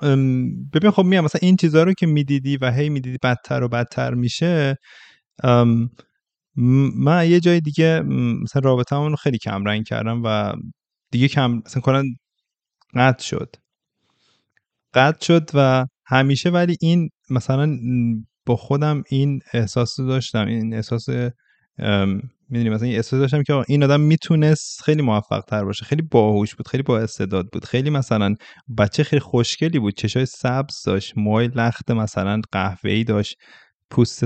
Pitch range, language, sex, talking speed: 110-140 Hz, Persian, male, 135 wpm